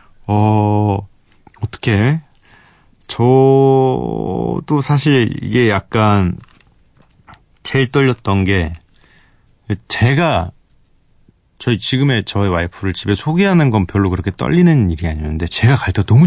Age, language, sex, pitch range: 30-49, Korean, male, 95-135 Hz